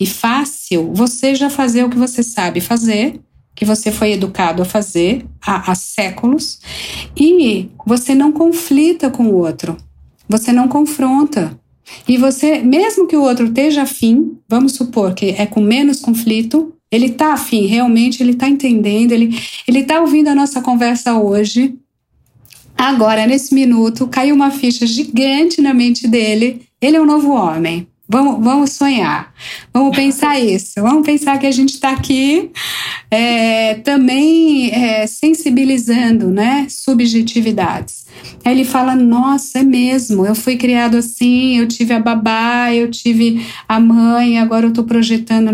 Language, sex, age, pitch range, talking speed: Portuguese, female, 40-59, 225-275 Hz, 150 wpm